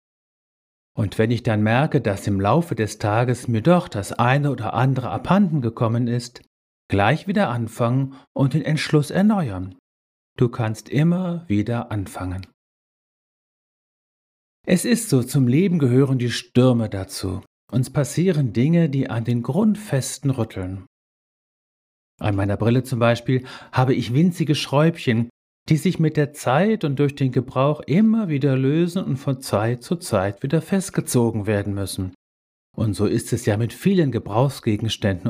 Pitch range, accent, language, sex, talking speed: 110-155 Hz, German, German, male, 145 wpm